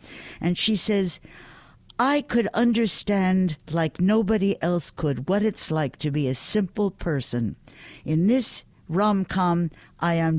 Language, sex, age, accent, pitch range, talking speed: English, female, 60-79, American, 145-205 Hz, 135 wpm